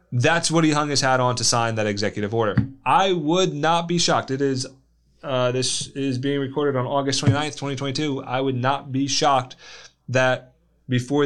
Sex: male